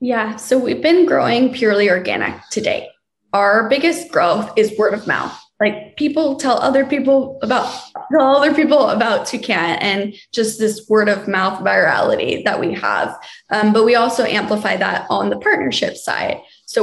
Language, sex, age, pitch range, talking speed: English, female, 10-29, 200-255 Hz, 170 wpm